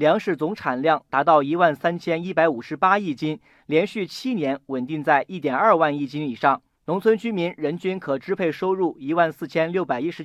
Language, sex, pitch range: Chinese, male, 150-195 Hz